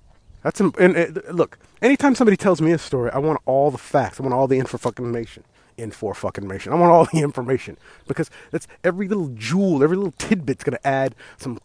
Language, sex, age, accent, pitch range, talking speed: English, male, 30-49, American, 115-175 Hz, 210 wpm